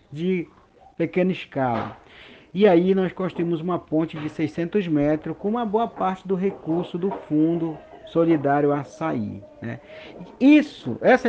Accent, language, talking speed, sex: Brazilian, Portuguese, 135 wpm, male